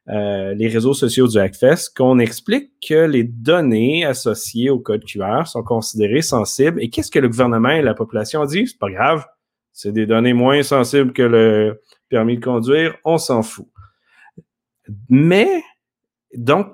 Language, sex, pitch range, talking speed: French, male, 115-160 Hz, 165 wpm